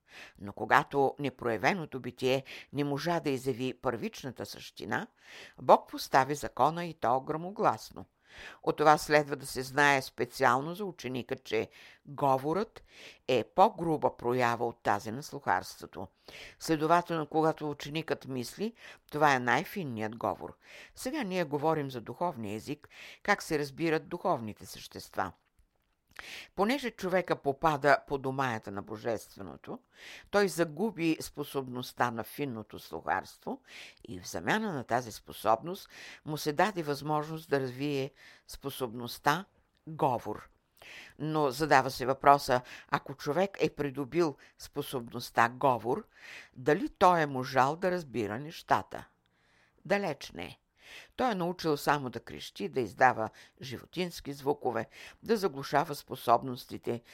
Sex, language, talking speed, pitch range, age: female, Bulgarian, 120 wpm, 125-160 Hz, 60-79